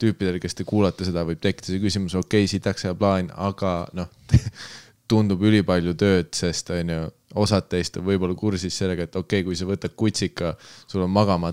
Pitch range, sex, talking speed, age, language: 85-100 Hz, male, 195 wpm, 20-39, English